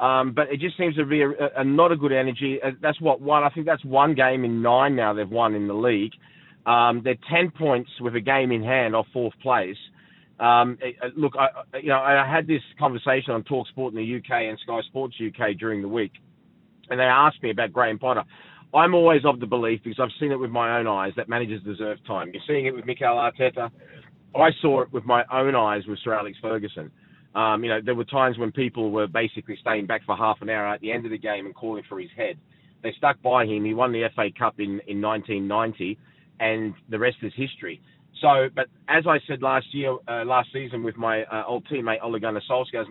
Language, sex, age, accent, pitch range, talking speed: English, male, 30-49, Australian, 110-140 Hz, 240 wpm